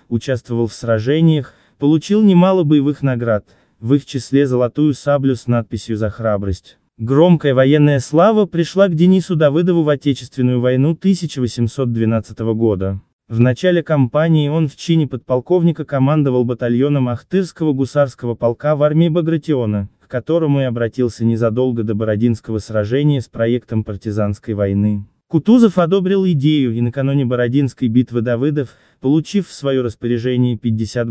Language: Russian